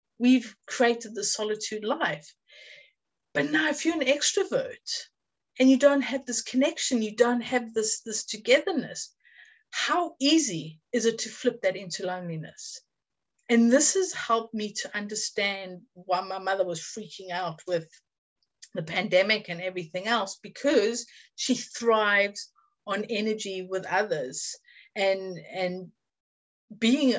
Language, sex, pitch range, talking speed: English, female, 200-260 Hz, 135 wpm